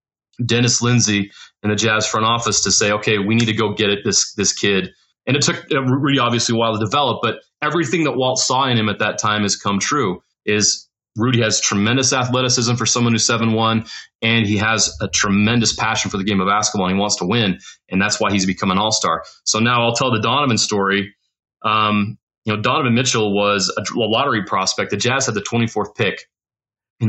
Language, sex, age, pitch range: English, male, 30-49, 105-130 Hz